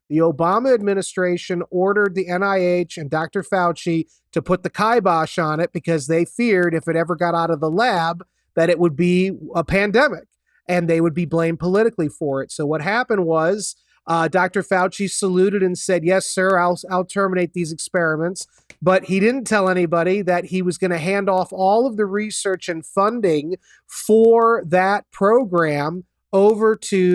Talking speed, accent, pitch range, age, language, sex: 175 wpm, American, 165-190 Hz, 30-49, English, male